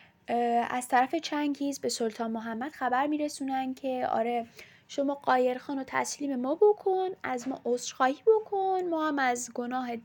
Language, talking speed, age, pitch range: Persian, 150 wpm, 10-29, 230-295 Hz